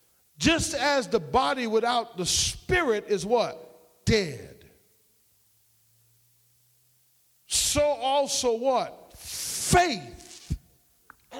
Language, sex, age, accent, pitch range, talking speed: English, male, 50-69, American, 170-265 Hz, 80 wpm